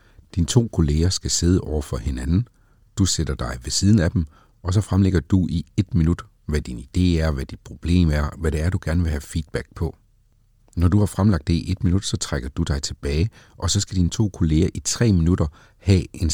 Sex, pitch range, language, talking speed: male, 80-100 Hz, Danish, 230 wpm